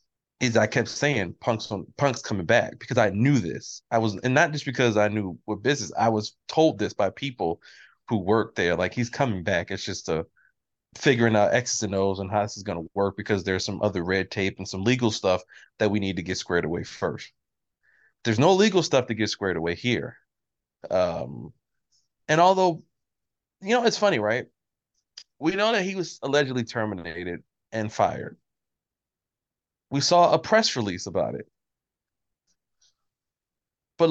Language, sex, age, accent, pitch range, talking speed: English, male, 30-49, American, 100-140 Hz, 180 wpm